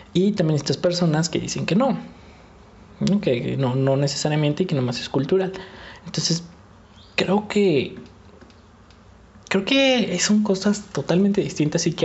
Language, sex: English, male